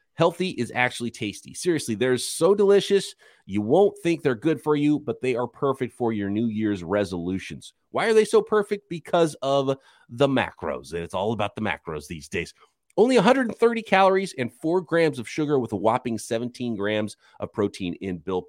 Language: English